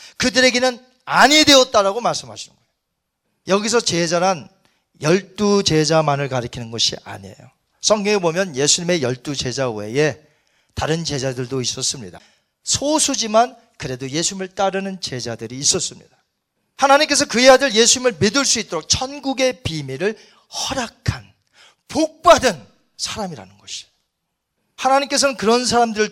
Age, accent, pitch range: 40-59, native, 150-255 Hz